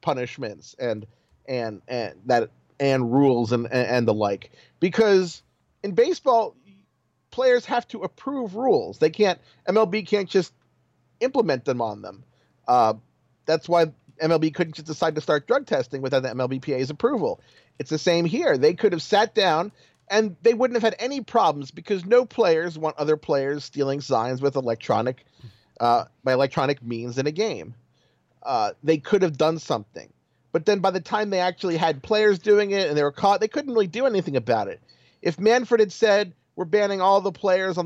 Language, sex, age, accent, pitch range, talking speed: English, male, 40-59, American, 140-205 Hz, 180 wpm